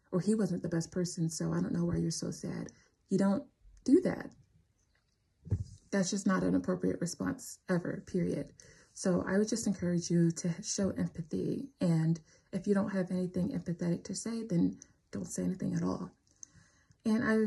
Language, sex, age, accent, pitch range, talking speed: English, female, 20-39, American, 165-190 Hz, 180 wpm